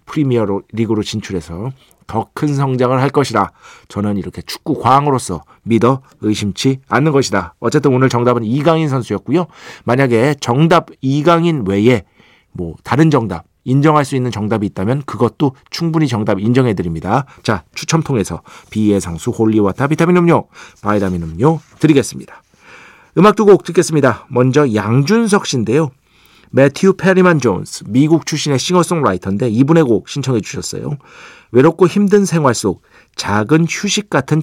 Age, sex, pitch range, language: 40-59, male, 105-150 Hz, Korean